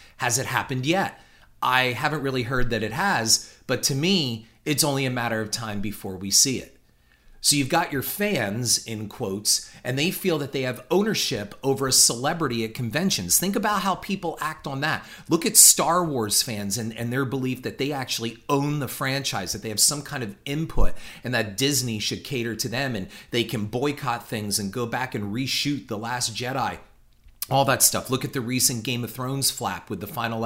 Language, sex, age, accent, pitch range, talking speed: English, male, 40-59, American, 110-140 Hz, 210 wpm